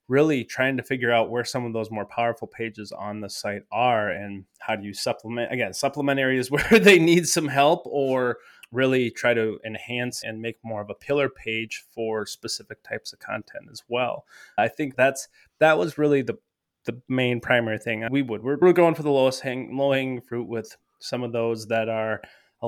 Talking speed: 200 wpm